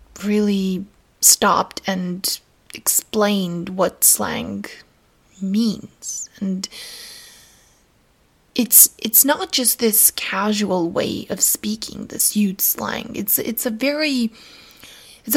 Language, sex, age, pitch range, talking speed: English, female, 20-39, 200-260 Hz, 100 wpm